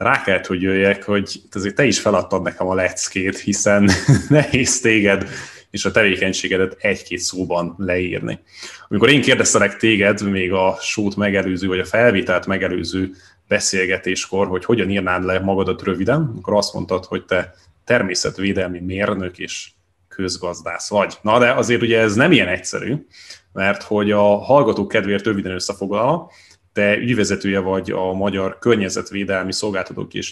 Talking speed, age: 145 wpm, 20-39